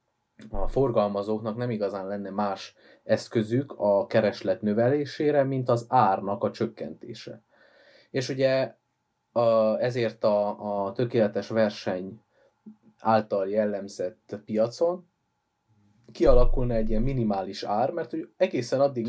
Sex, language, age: male, Hungarian, 20-39